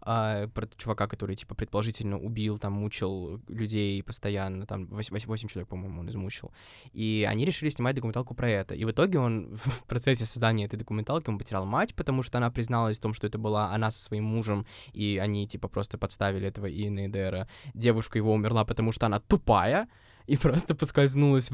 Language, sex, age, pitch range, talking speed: Russian, male, 20-39, 105-125 Hz, 180 wpm